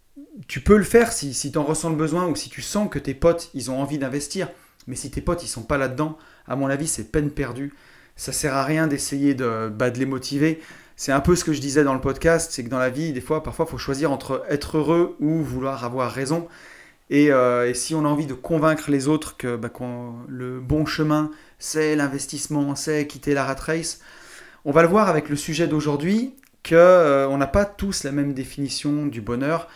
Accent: French